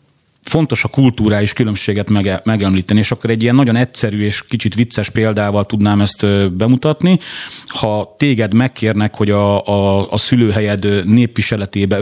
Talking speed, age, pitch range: 140 wpm, 30-49, 100-120 Hz